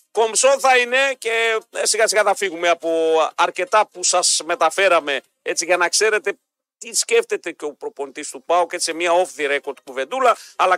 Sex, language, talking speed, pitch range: male, Greek, 180 wpm, 180-270 Hz